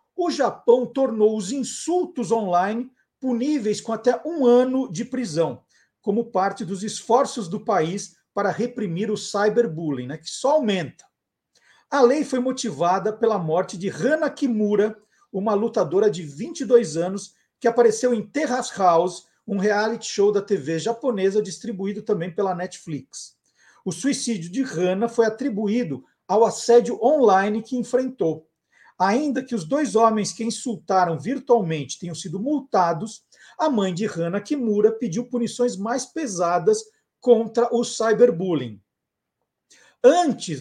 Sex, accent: male, Brazilian